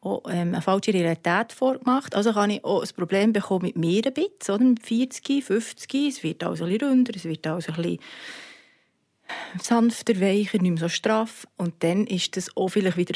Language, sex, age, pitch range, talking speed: German, female, 30-49, 185-240 Hz, 195 wpm